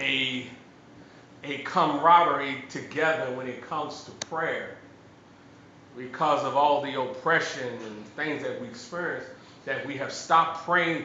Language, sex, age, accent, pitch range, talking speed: English, male, 40-59, American, 145-200 Hz, 130 wpm